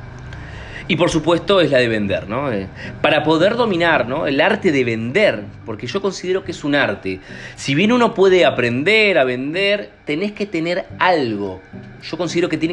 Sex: male